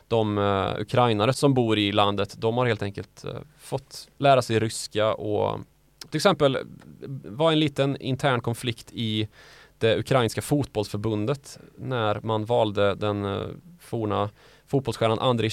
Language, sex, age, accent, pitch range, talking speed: Swedish, male, 20-39, native, 105-135 Hz, 140 wpm